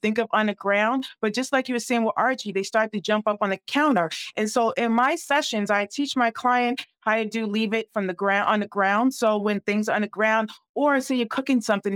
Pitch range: 210-250 Hz